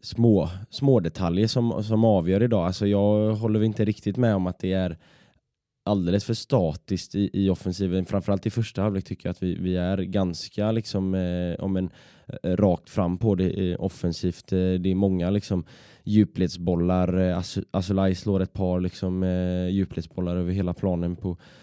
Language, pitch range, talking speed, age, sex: Swedish, 90-105 Hz, 170 wpm, 10-29, male